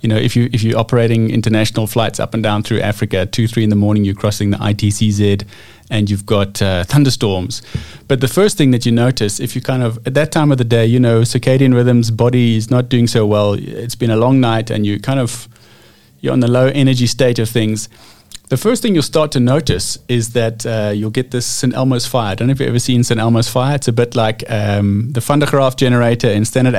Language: English